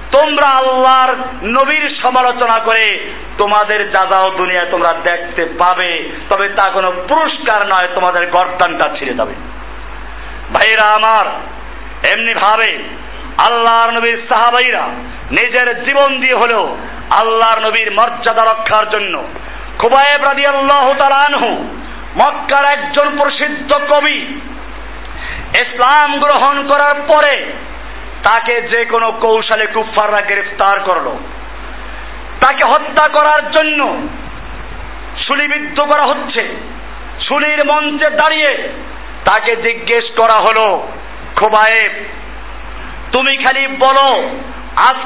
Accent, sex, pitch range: native, male, 220-290 Hz